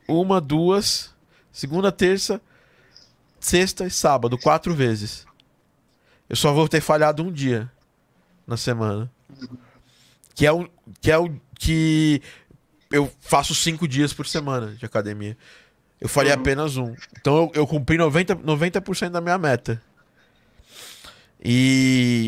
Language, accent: Portuguese, Brazilian